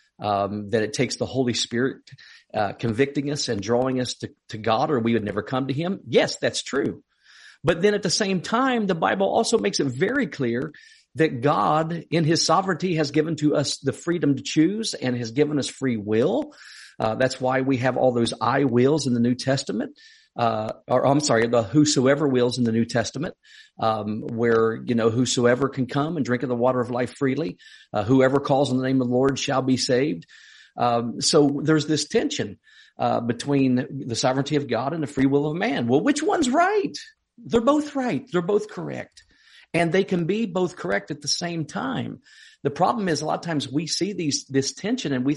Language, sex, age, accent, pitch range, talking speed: English, male, 50-69, American, 125-185 Hz, 210 wpm